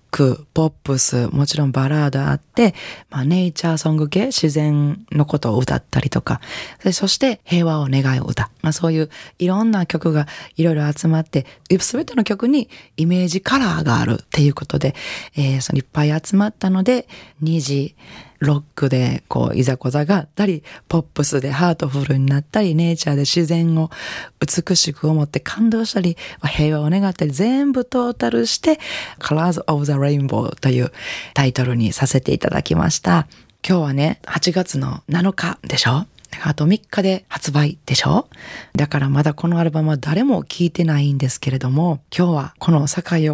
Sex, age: female, 20-39